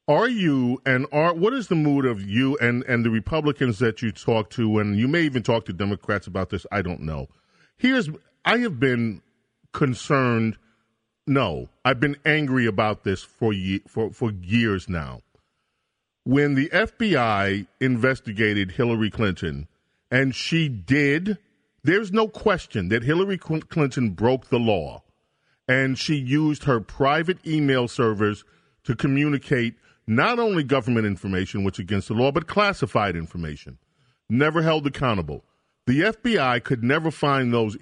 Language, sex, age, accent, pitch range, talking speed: English, male, 40-59, American, 110-150 Hz, 150 wpm